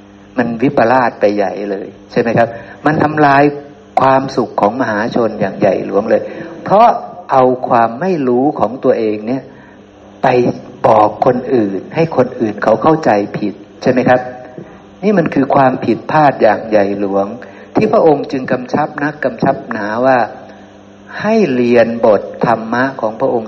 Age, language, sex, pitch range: 60-79, Thai, male, 100-135 Hz